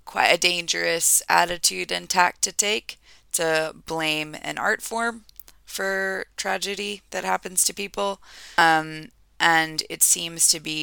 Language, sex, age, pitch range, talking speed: English, female, 20-39, 145-190 Hz, 140 wpm